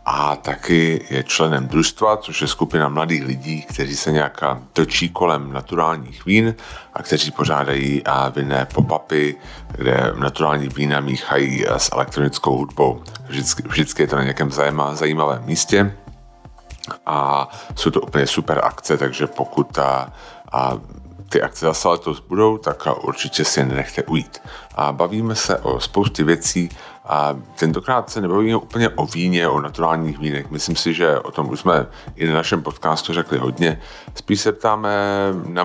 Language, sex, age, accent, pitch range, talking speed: Czech, male, 40-59, native, 70-85 Hz, 155 wpm